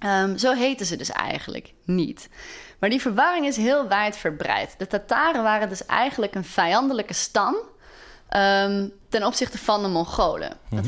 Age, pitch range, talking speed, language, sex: 20-39, 180-235 Hz, 160 wpm, Dutch, female